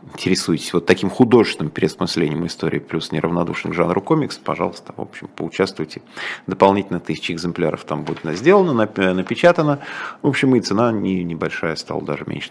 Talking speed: 145 wpm